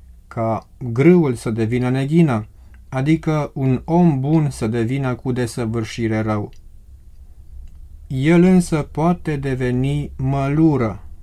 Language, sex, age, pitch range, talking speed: Romanian, male, 30-49, 110-145 Hz, 100 wpm